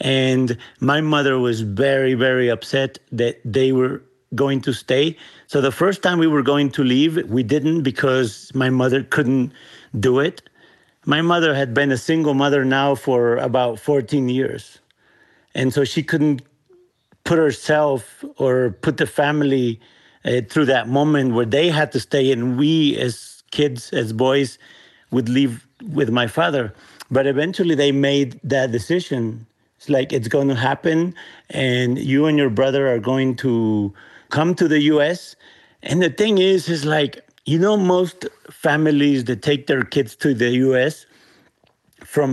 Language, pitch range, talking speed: English, 130-155 Hz, 160 wpm